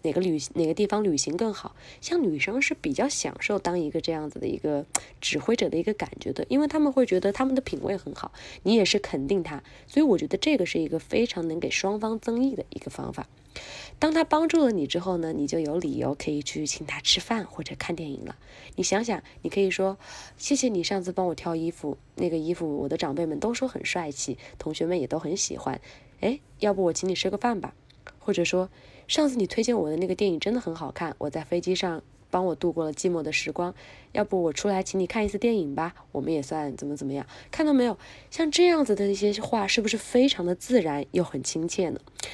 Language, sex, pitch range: Chinese, female, 155-220 Hz